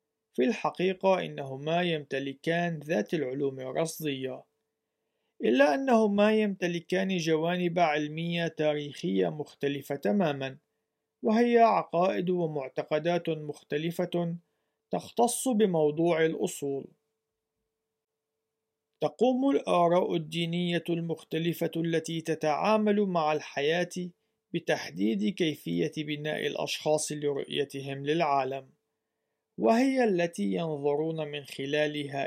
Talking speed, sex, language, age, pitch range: 75 wpm, male, Arabic, 40-59, 145-180 Hz